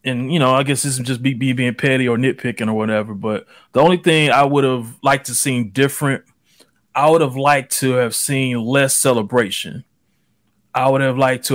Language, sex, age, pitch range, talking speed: English, male, 20-39, 130-170 Hz, 215 wpm